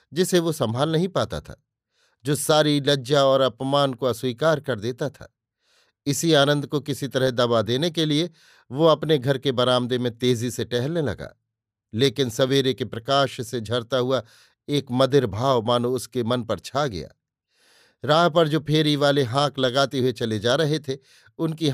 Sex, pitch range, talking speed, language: male, 125-145 Hz, 175 wpm, Hindi